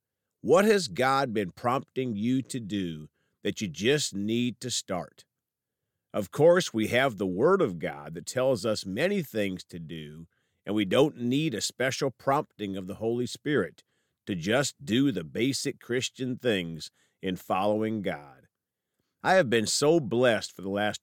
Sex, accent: male, American